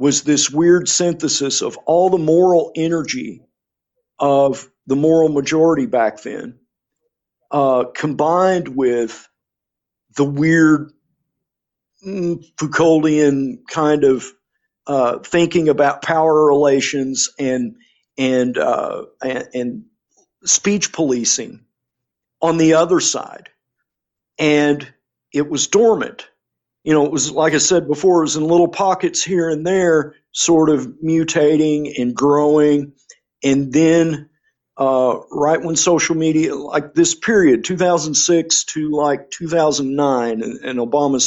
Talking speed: 120 wpm